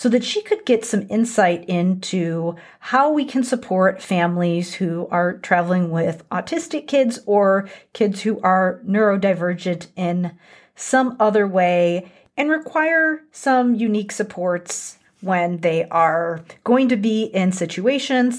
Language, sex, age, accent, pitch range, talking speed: English, female, 40-59, American, 180-245 Hz, 135 wpm